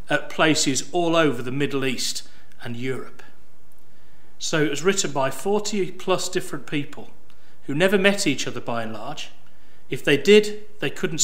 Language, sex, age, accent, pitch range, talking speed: English, male, 40-59, British, 135-165 Hz, 165 wpm